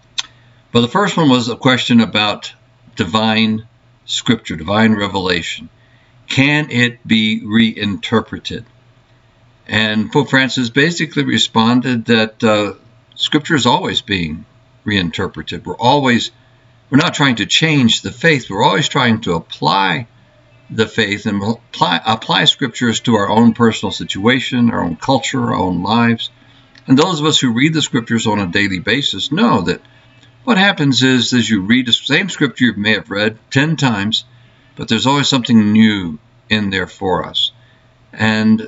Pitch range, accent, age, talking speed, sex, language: 110-130 Hz, American, 60-79, 150 wpm, male, English